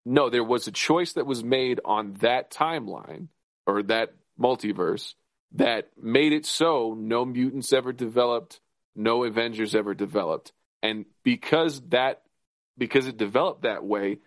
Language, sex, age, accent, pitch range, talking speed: English, male, 40-59, American, 110-145 Hz, 145 wpm